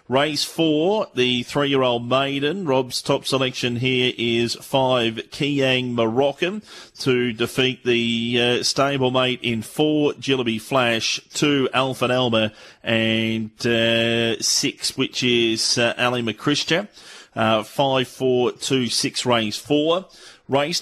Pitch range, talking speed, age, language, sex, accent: 115-135 Hz, 125 wpm, 30-49, English, male, Australian